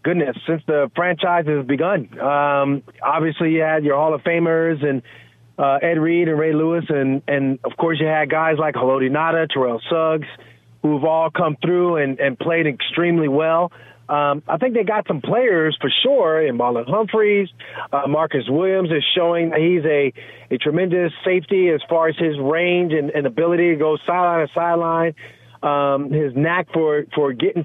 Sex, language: male, English